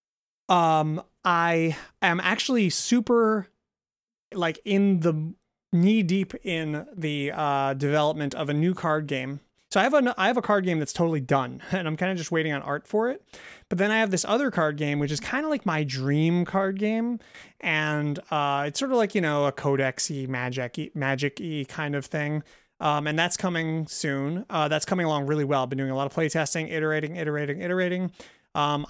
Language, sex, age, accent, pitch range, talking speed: English, male, 30-49, American, 140-180 Hz, 200 wpm